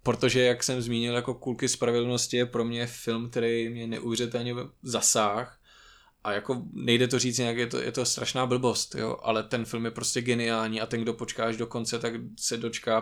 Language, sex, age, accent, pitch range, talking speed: Czech, male, 20-39, native, 110-120 Hz, 205 wpm